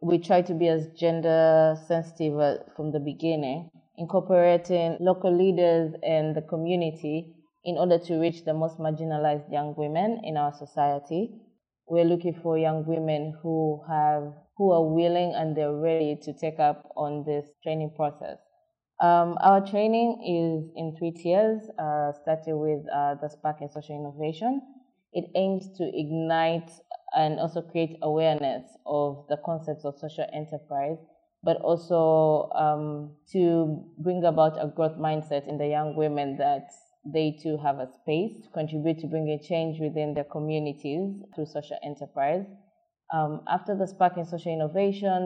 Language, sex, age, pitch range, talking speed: English, female, 20-39, 150-175 Hz, 155 wpm